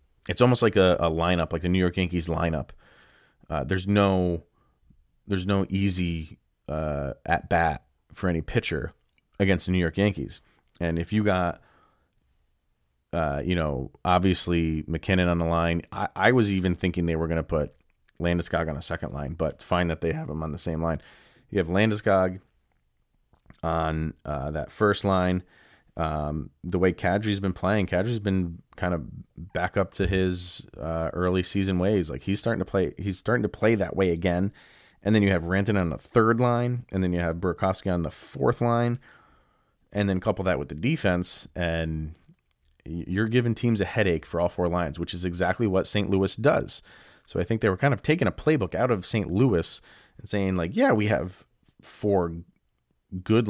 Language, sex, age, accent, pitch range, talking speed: English, male, 30-49, American, 80-100 Hz, 190 wpm